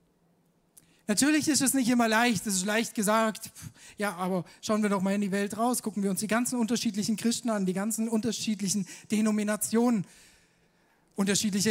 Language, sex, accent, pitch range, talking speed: German, male, German, 195-250 Hz, 170 wpm